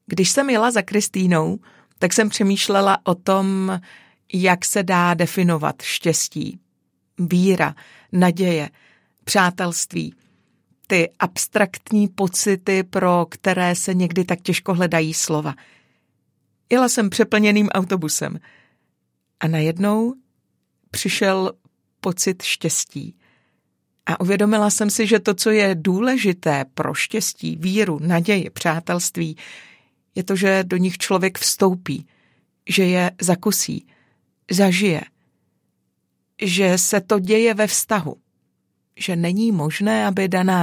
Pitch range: 165-195 Hz